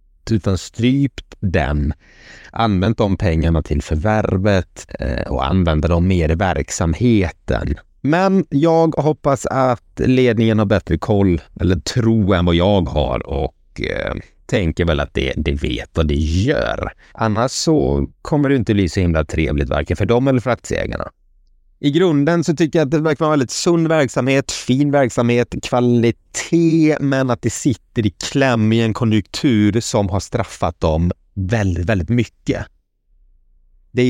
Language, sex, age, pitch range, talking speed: Swedish, male, 30-49, 85-125 Hz, 155 wpm